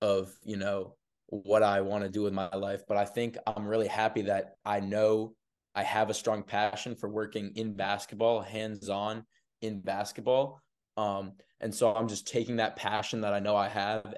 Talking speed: 190 wpm